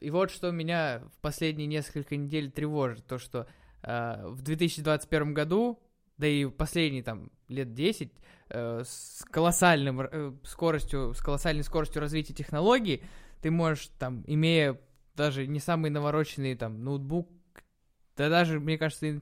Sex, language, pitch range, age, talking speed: male, Russian, 135-170 Hz, 20-39, 145 wpm